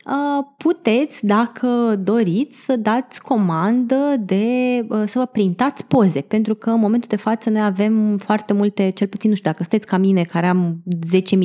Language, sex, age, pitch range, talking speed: Romanian, female, 20-39, 190-245 Hz, 175 wpm